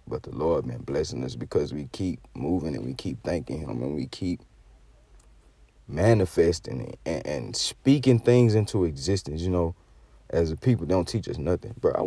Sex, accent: male, American